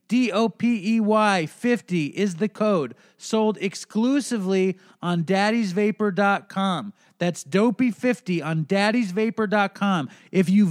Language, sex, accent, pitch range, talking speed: English, male, American, 180-220 Hz, 85 wpm